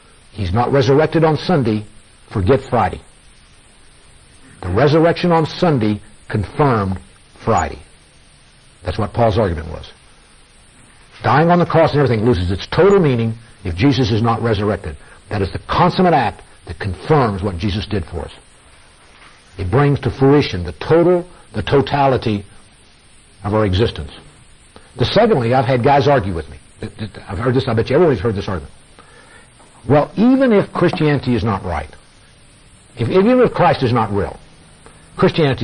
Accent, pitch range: American, 95-140 Hz